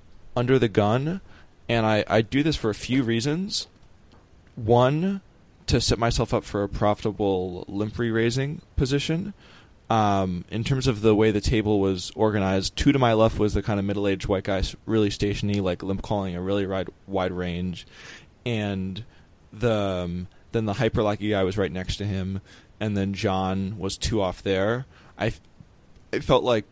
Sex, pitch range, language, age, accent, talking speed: male, 95-110 Hz, English, 20-39, American, 175 wpm